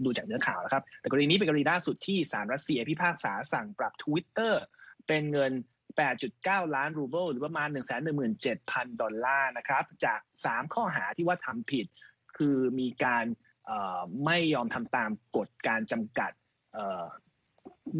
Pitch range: 130-180 Hz